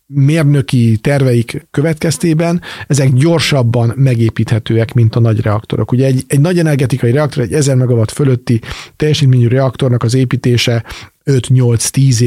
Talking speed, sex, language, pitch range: 115 wpm, male, English, 115-140 Hz